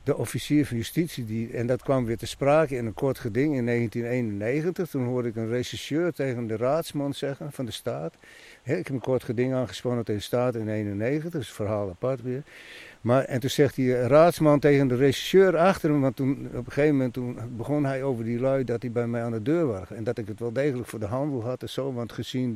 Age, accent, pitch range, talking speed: 60-79, Dutch, 120-145 Hz, 240 wpm